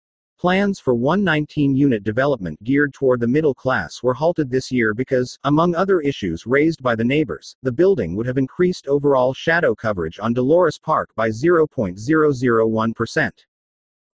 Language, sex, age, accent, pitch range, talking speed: English, male, 40-59, American, 115-160 Hz, 150 wpm